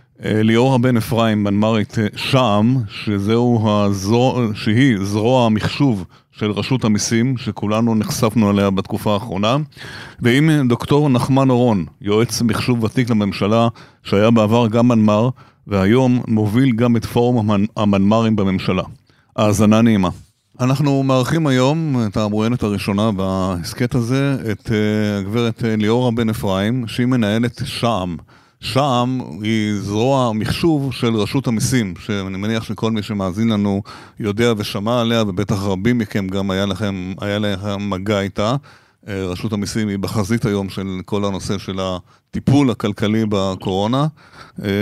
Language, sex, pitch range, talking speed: Hebrew, male, 100-120 Hz, 125 wpm